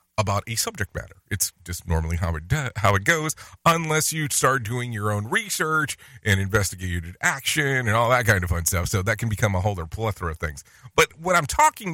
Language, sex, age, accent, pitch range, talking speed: English, male, 40-59, American, 100-150 Hz, 220 wpm